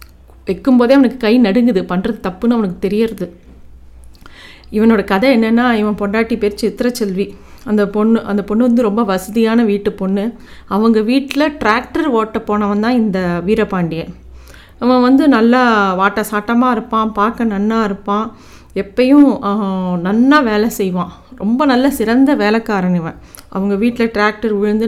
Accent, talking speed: native, 135 wpm